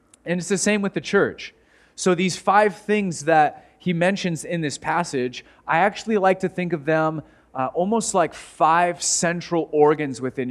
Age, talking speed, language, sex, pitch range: 30-49, 175 wpm, English, male, 150-190 Hz